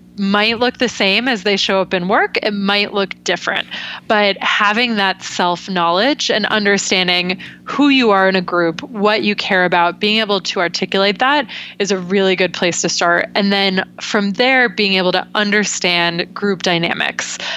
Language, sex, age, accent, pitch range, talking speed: English, female, 20-39, American, 180-205 Hz, 180 wpm